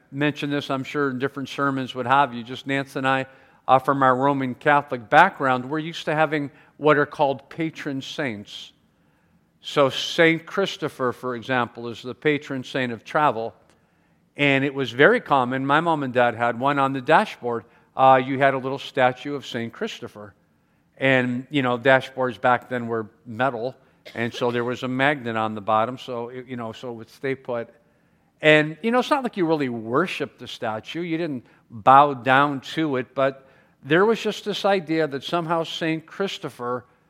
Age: 50-69